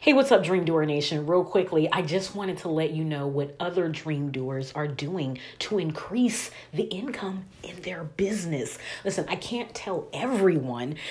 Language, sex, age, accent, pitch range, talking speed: English, female, 30-49, American, 155-210 Hz, 180 wpm